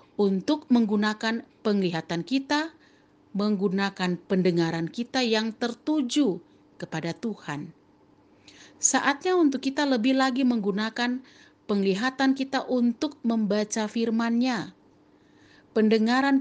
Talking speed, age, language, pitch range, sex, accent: 85 wpm, 50-69, Indonesian, 185-245 Hz, female, native